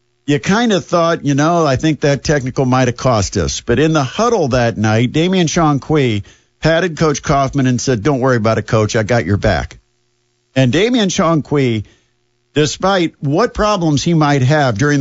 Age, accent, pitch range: 50-69, American, 120-160 Hz